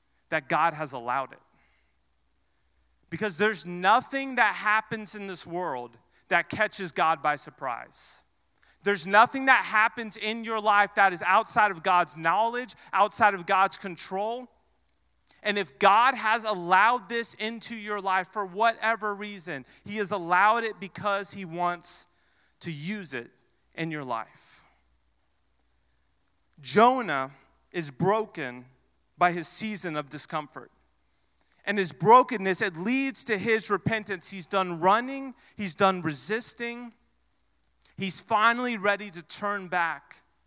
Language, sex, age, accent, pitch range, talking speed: English, male, 30-49, American, 155-220 Hz, 130 wpm